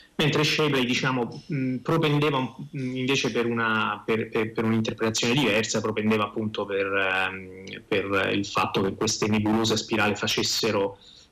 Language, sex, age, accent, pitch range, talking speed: Italian, male, 30-49, native, 110-130 Hz, 105 wpm